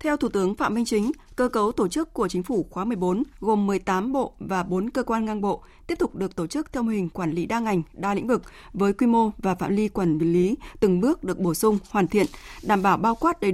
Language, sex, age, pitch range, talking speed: Vietnamese, female, 20-39, 190-245 Hz, 260 wpm